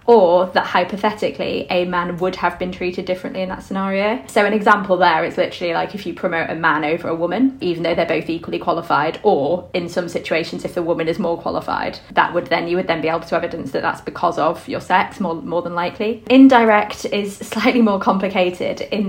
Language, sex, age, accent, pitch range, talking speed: English, female, 20-39, British, 185-215 Hz, 220 wpm